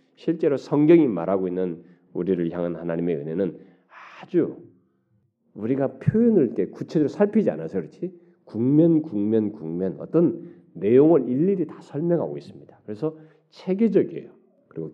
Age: 40-59